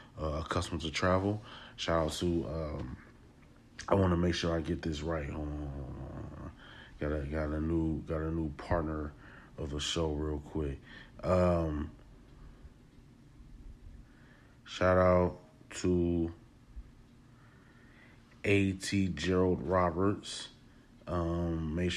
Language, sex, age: English, male, 30-49